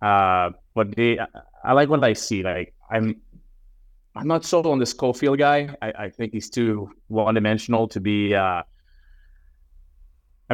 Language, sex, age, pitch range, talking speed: English, male, 30-49, 100-125 Hz, 155 wpm